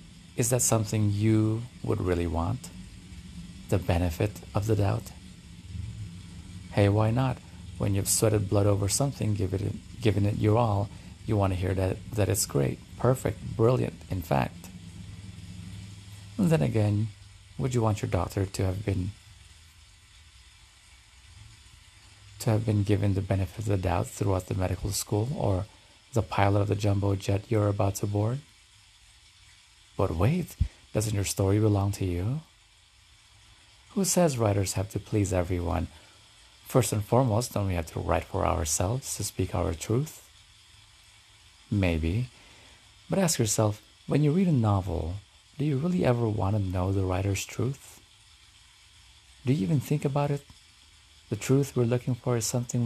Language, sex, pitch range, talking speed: English, male, 90-110 Hz, 155 wpm